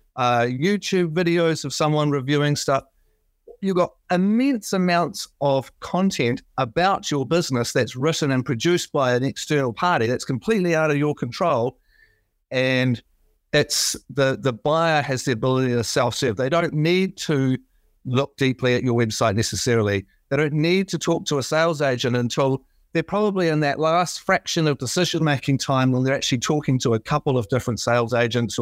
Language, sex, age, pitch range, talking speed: English, male, 50-69, 120-160 Hz, 170 wpm